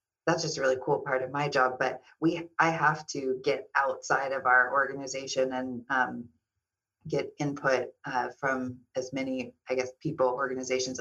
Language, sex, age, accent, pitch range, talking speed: English, female, 30-49, American, 125-145 Hz, 165 wpm